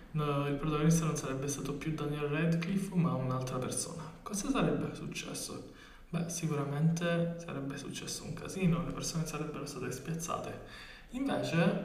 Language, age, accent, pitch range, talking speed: Italian, 20-39, native, 145-175 Hz, 130 wpm